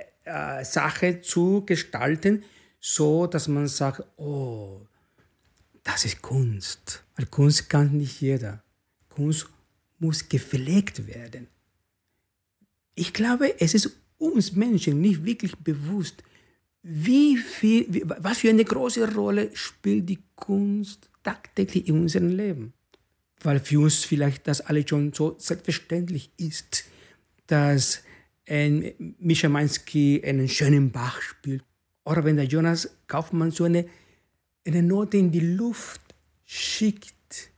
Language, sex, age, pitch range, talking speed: German, male, 60-79, 145-205 Hz, 120 wpm